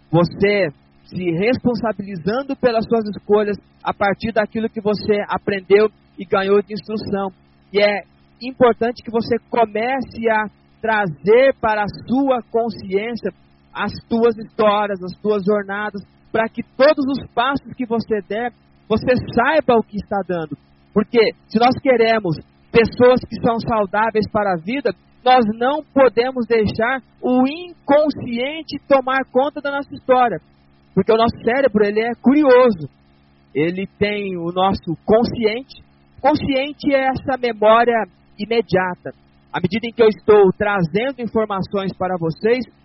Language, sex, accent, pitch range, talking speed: Portuguese, male, Brazilian, 190-240 Hz, 135 wpm